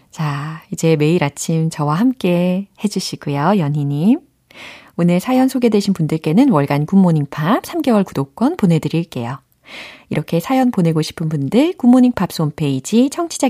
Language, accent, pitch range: Korean, native, 155-255 Hz